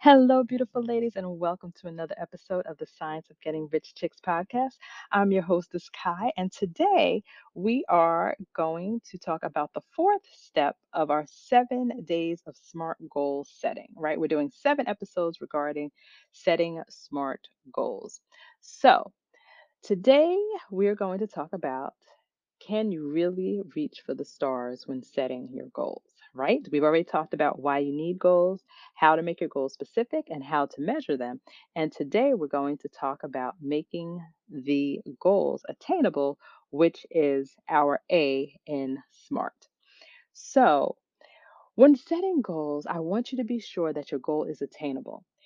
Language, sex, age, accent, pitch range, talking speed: English, female, 30-49, American, 150-230 Hz, 155 wpm